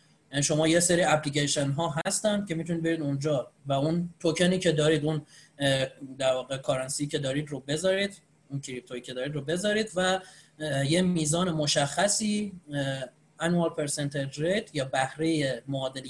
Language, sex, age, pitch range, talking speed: Persian, male, 30-49, 140-180 Hz, 140 wpm